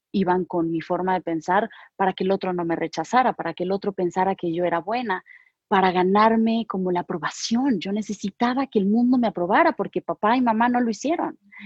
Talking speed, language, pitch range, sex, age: 210 wpm, Spanish, 180-235 Hz, female, 30-49